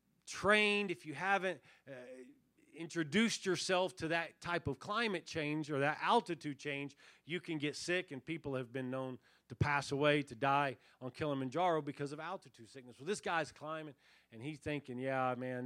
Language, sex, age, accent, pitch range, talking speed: English, male, 40-59, American, 130-170 Hz, 175 wpm